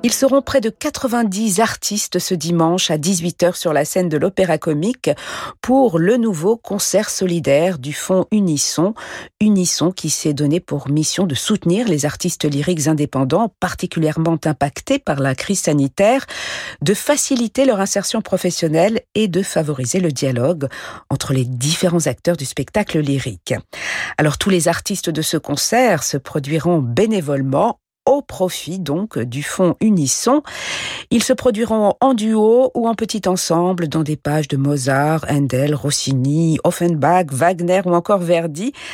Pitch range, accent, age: 150-210 Hz, French, 50-69